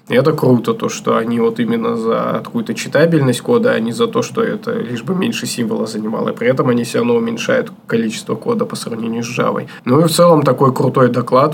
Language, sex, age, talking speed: Russian, male, 20-39, 220 wpm